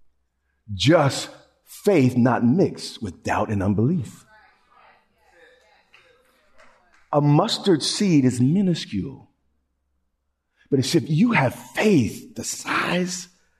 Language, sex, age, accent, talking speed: English, male, 50-69, American, 95 wpm